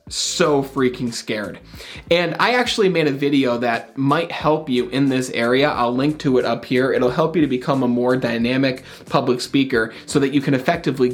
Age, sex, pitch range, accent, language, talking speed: 30-49, male, 130-180 Hz, American, English, 200 wpm